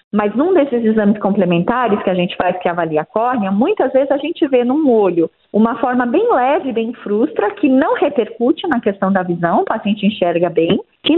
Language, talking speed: Portuguese, 205 wpm